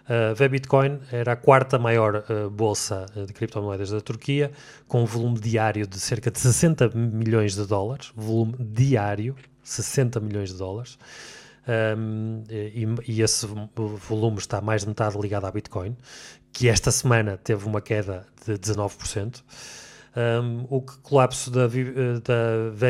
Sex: male